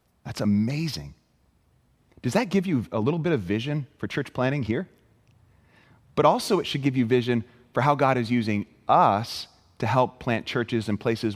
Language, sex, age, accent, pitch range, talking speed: English, male, 30-49, American, 110-160 Hz, 180 wpm